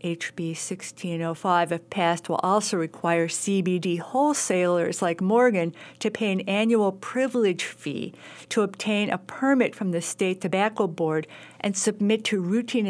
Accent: American